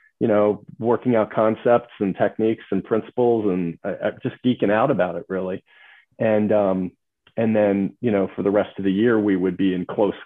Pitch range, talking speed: 90-110 Hz, 200 wpm